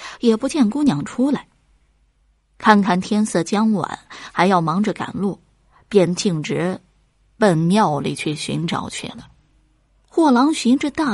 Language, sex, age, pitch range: Chinese, female, 20-39, 160-220 Hz